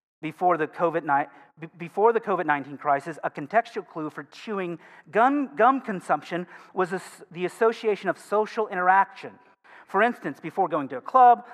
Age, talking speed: 40-59, 130 wpm